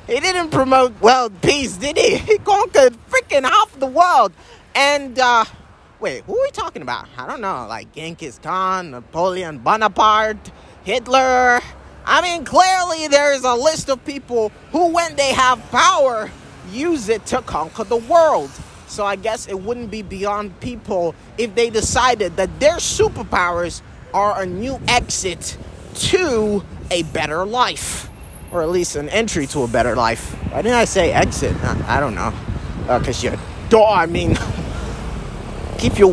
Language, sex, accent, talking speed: English, male, American, 160 wpm